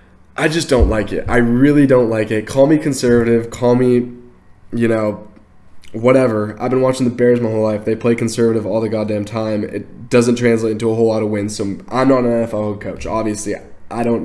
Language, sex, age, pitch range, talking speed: English, male, 10-29, 110-125 Hz, 215 wpm